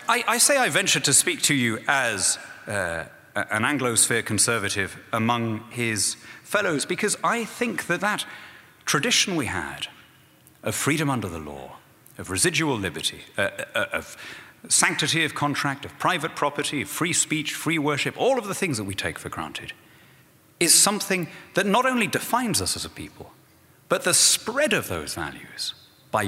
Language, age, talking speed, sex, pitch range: English, 30-49, 165 wpm, male, 110-165 Hz